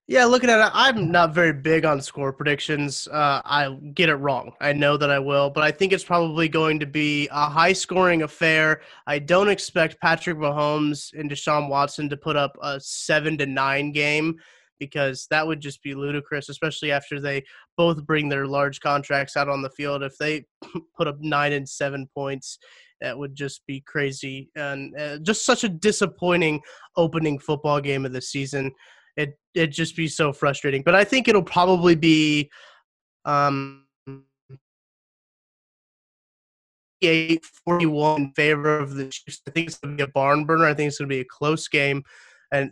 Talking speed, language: 185 wpm, English